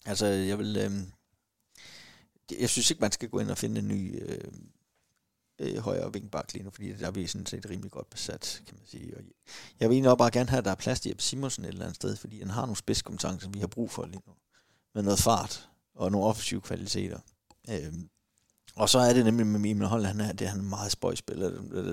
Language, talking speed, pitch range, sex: Danish, 235 wpm, 100-115 Hz, male